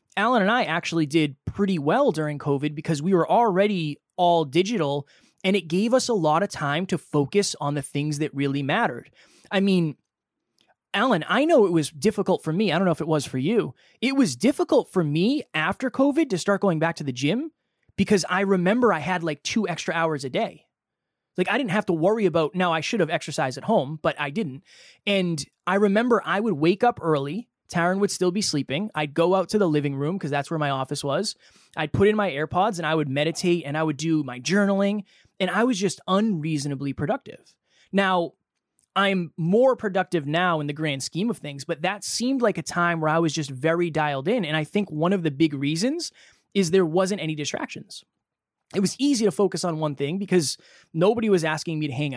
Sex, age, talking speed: male, 20-39, 220 wpm